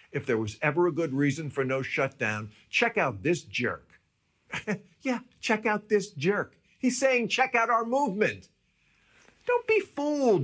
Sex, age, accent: male, 50-69, American